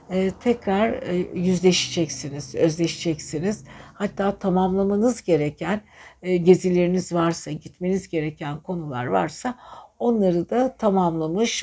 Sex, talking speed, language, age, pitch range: female, 75 wpm, Turkish, 60-79, 165-200 Hz